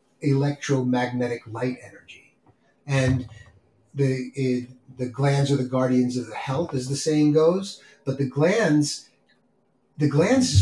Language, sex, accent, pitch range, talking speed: English, male, American, 125-155 Hz, 135 wpm